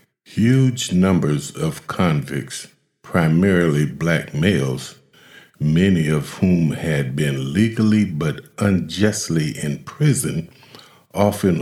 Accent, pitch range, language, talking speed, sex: American, 80-100 Hz, English, 95 wpm, male